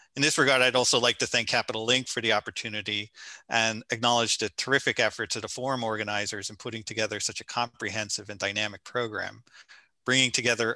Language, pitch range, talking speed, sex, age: English, 110-130 Hz, 185 wpm, male, 40-59